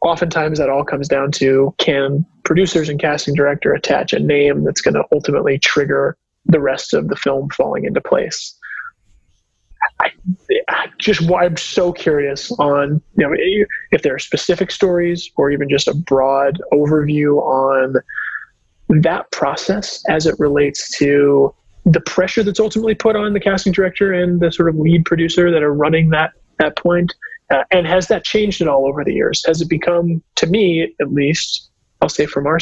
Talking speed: 175 wpm